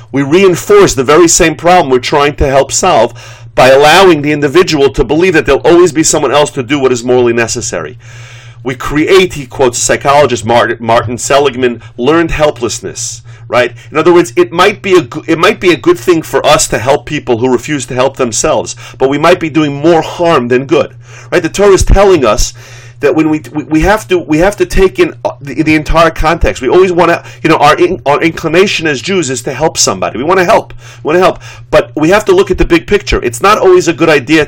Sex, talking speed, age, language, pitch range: male, 220 wpm, 40-59, English, 120-155 Hz